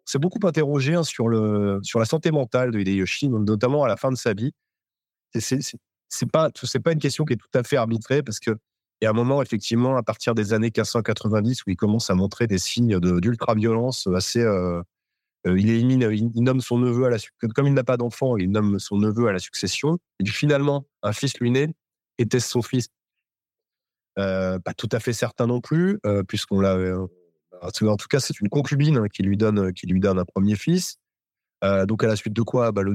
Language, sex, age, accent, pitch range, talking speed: French, male, 30-49, French, 100-125 Hz, 225 wpm